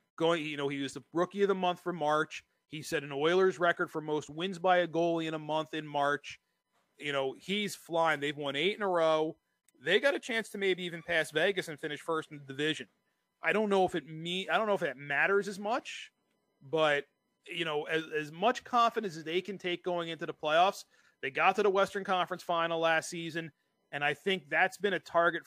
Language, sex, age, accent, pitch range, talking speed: English, male, 30-49, American, 145-180 Hz, 230 wpm